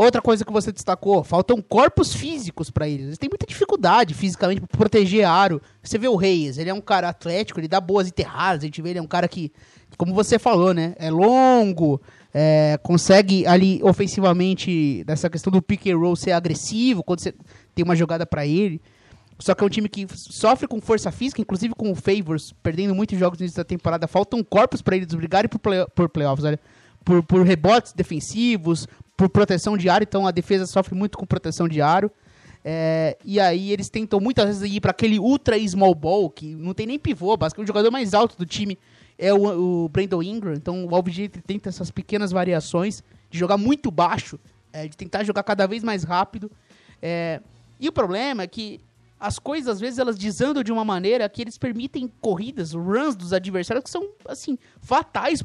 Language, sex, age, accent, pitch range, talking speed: English, male, 20-39, Brazilian, 170-210 Hz, 200 wpm